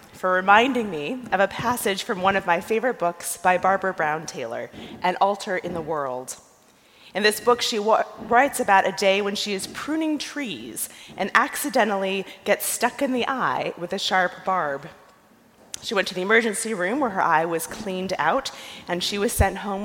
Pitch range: 180-225 Hz